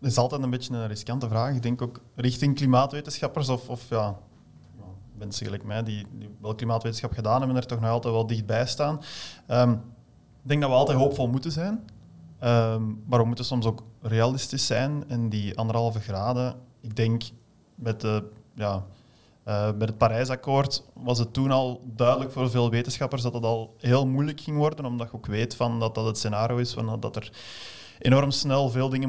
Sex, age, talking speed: male, 20-39, 180 wpm